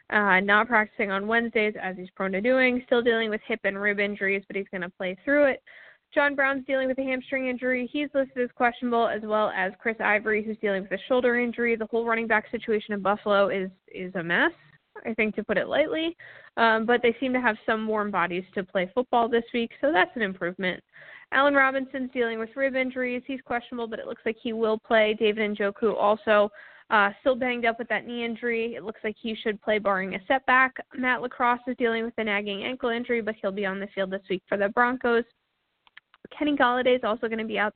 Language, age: English, 20-39